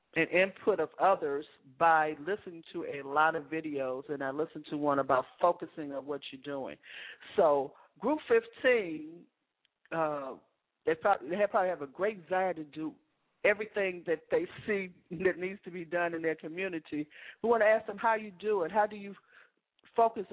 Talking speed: 180 wpm